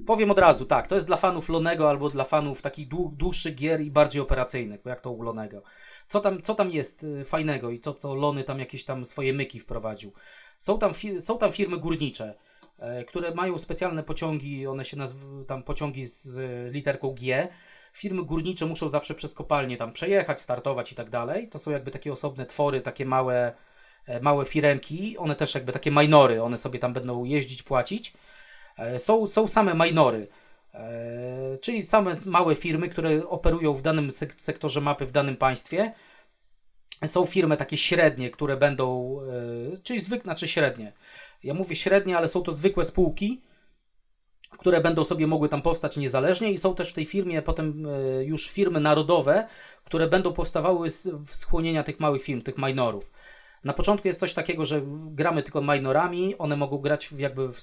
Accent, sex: native, male